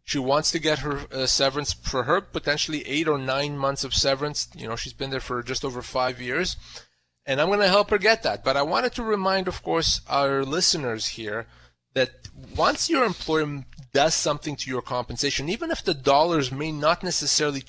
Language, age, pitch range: English, 30-49, 130-175 Hz